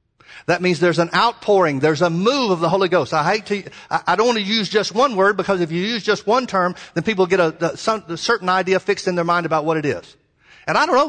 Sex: male